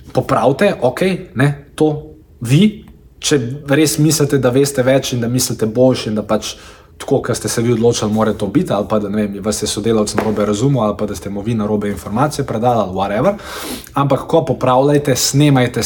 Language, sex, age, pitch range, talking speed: Croatian, male, 20-39, 110-140 Hz, 195 wpm